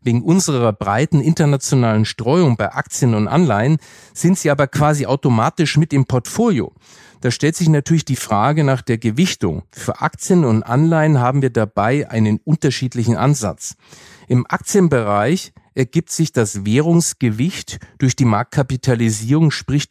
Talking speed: 140 wpm